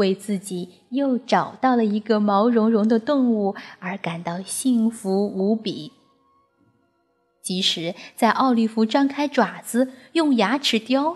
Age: 20-39